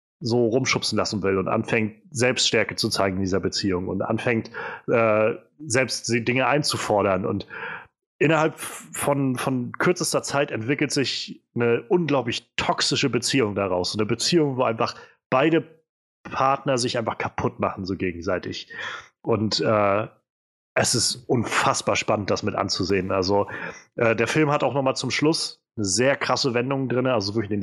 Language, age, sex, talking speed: German, 30-49, male, 155 wpm